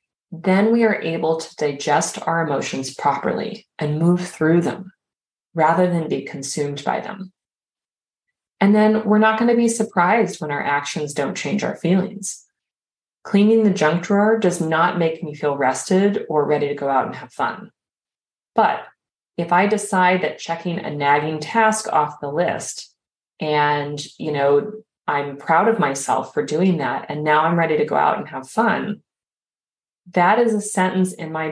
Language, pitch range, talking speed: English, 150-205 Hz, 170 wpm